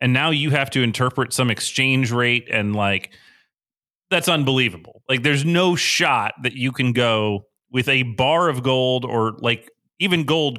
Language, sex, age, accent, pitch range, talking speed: English, male, 30-49, American, 110-140 Hz, 170 wpm